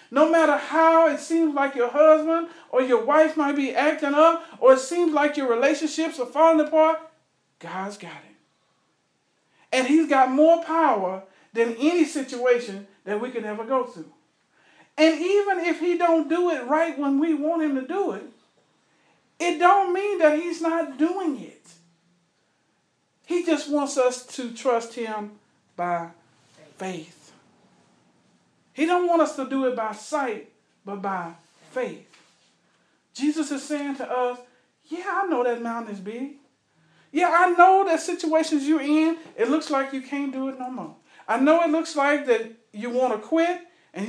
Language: English